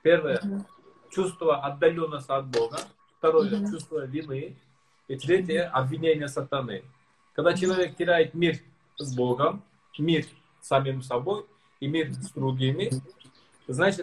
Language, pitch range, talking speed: Russian, 140-180 Hz, 130 wpm